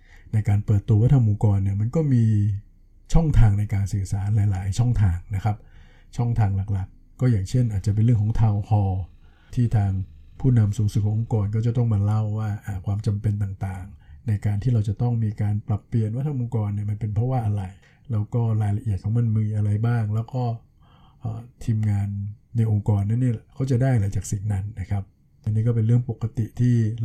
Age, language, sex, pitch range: 60-79, Thai, male, 105-120 Hz